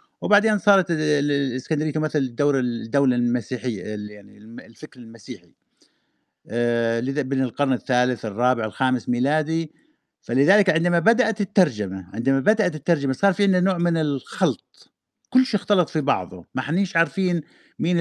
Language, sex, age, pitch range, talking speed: Arabic, male, 50-69, 130-180 Hz, 125 wpm